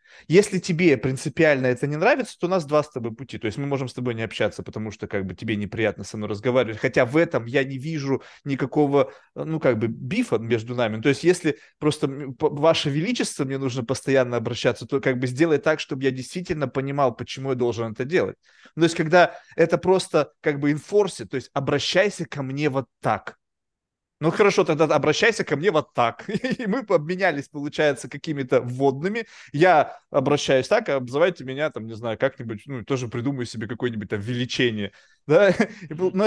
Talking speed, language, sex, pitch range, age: 190 wpm, Russian, male, 130-170 Hz, 20-39